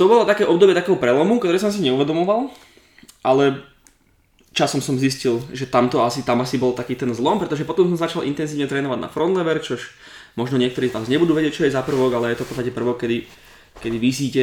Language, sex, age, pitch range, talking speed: Slovak, male, 20-39, 125-145 Hz, 210 wpm